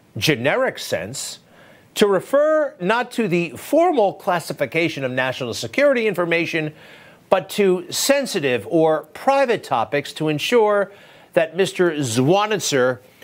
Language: English